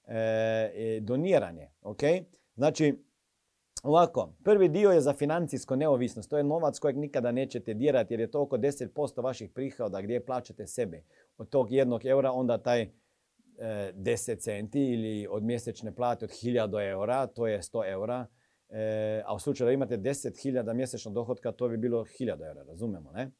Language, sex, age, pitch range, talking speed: Croatian, male, 40-59, 110-135 Hz, 165 wpm